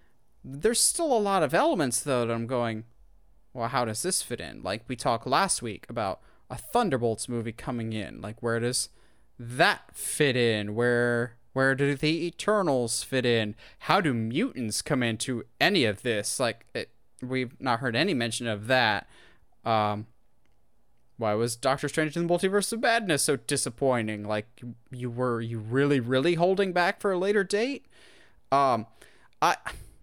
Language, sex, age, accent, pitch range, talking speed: English, male, 20-39, American, 120-175 Hz, 165 wpm